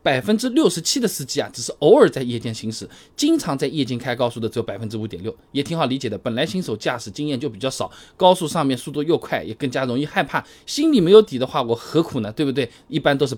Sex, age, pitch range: male, 20-39, 130-190 Hz